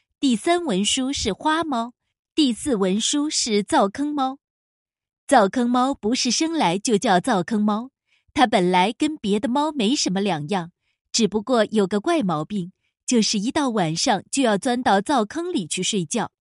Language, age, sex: Chinese, 20-39, female